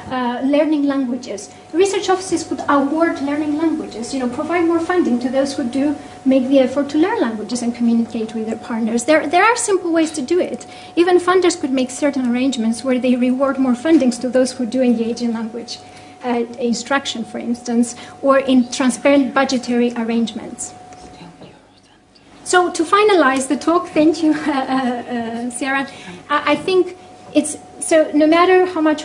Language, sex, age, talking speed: English, female, 30-49, 170 wpm